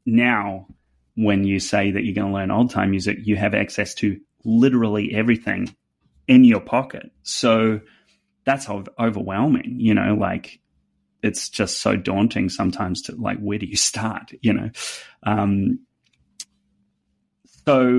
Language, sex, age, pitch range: English, male, 30-49, 100-120 Hz